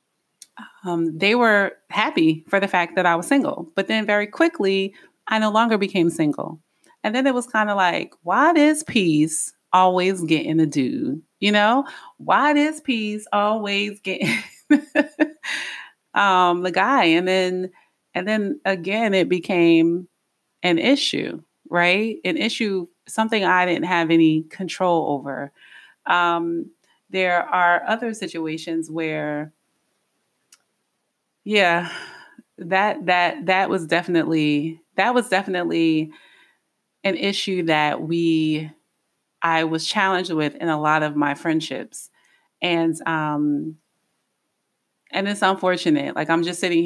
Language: English